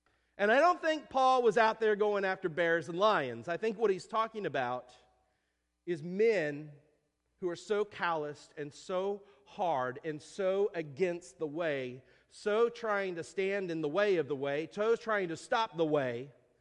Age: 40-59